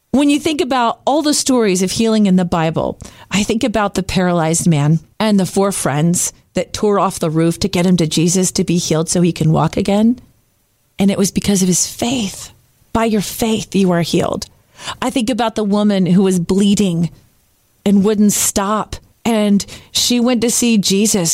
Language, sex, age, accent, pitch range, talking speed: English, female, 40-59, American, 185-255 Hz, 195 wpm